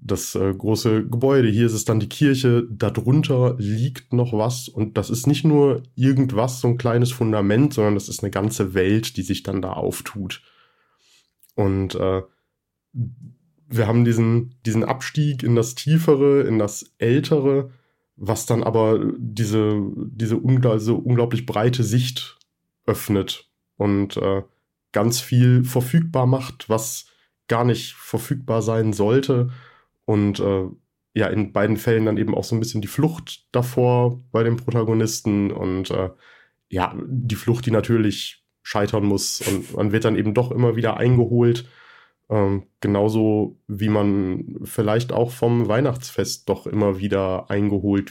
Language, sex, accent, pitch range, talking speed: German, male, German, 105-125 Hz, 150 wpm